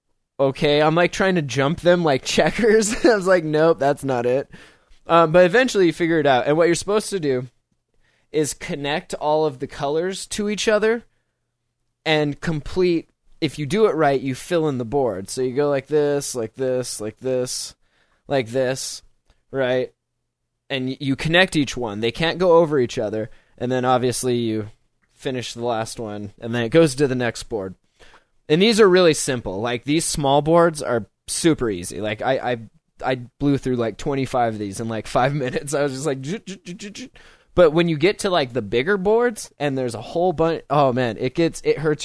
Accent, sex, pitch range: American, male, 120-165 Hz